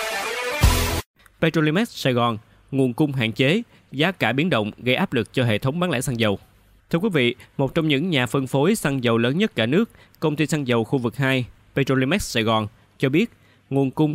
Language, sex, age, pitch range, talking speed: Vietnamese, male, 20-39, 115-145 Hz, 210 wpm